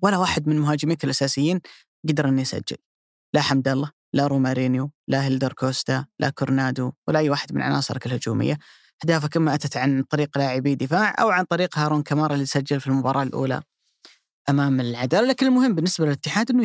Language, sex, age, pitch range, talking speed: Arabic, female, 20-39, 135-165 Hz, 175 wpm